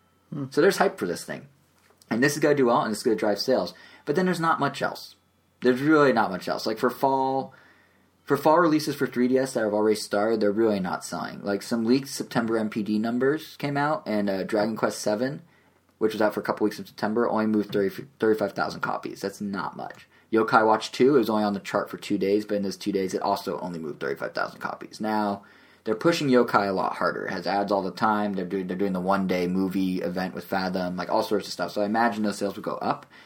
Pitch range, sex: 95-120 Hz, male